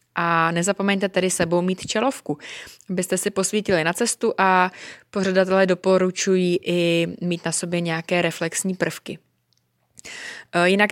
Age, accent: 20-39, native